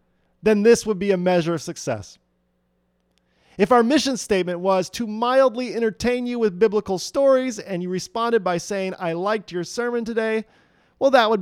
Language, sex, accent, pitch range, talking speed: English, male, American, 135-215 Hz, 175 wpm